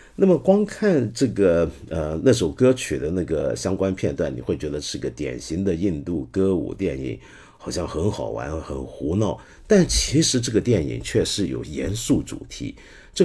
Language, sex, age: Chinese, male, 50-69